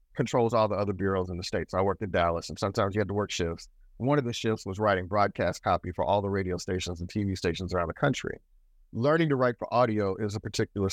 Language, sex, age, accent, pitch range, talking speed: English, male, 30-49, American, 100-130 Hz, 255 wpm